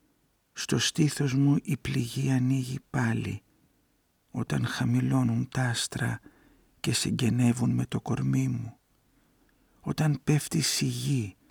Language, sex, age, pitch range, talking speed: Greek, male, 50-69, 105-135 Hz, 110 wpm